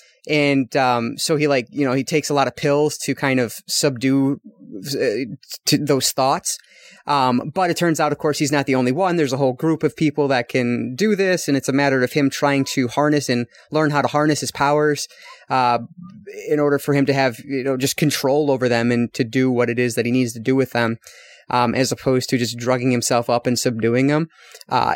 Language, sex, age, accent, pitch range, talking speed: English, male, 20-39, American, 125-150 Hz, 230 wpm